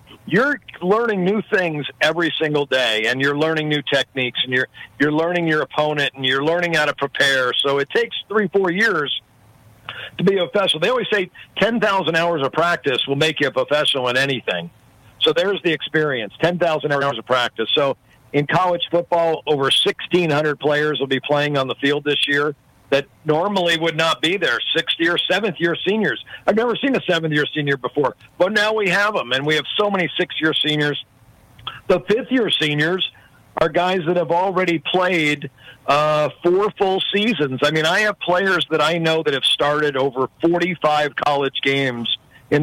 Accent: American